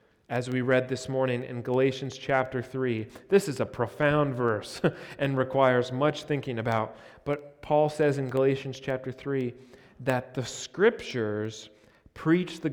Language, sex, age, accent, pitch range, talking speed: English, male, 30-49, American, 120-150 Hz, 145 wpm